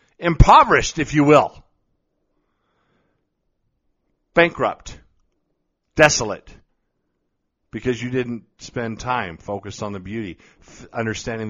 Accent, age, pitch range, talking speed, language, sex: American, 50-69, 130-170 Hz, 85 wpm, English, male